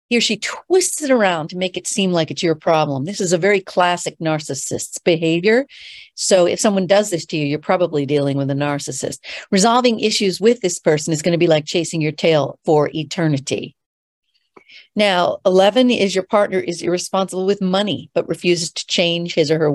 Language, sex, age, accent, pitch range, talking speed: English, female, 50-69, American, 155-200 Hz, 200 wpm